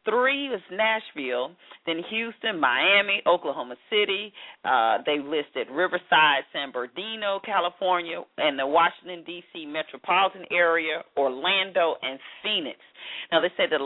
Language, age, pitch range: English, 40-59, 150-220 Hz